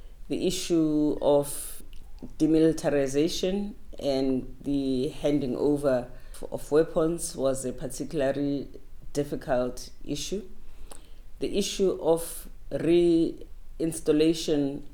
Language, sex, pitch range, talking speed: English, female, 135-160 Hz, 75 wpm